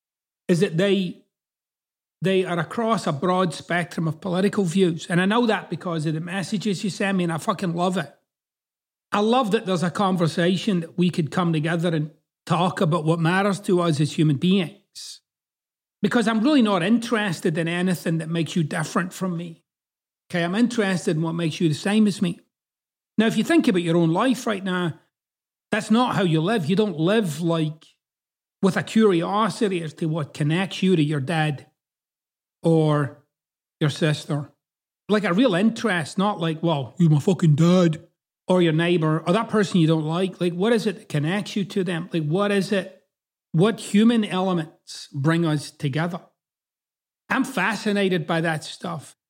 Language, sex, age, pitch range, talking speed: English, male, 30-49, 165-205 Hz, 185 wpm